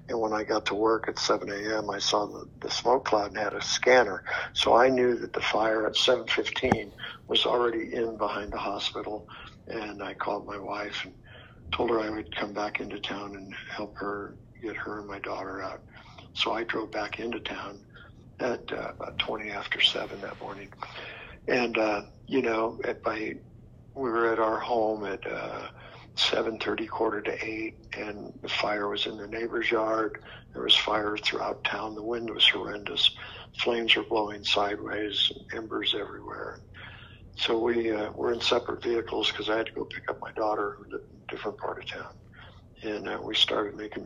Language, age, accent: English, 60-79, American